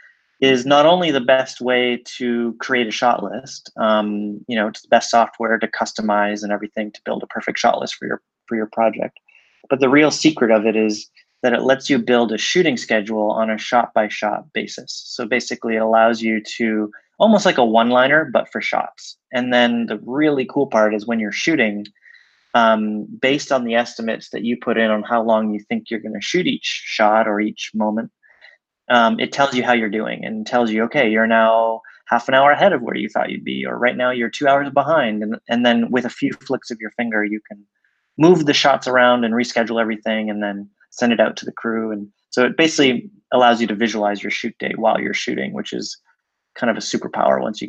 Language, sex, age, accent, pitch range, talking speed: English, male, 30-49, American, 110-130 Hz, 225 wpm